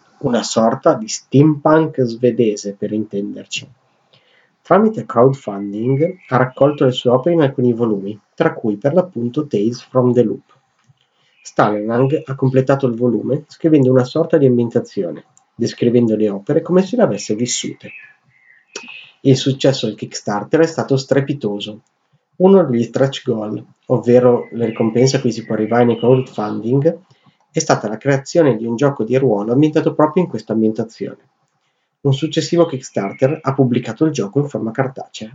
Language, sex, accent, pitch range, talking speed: Italian, male, native, 115-150 Hz, 150 wpm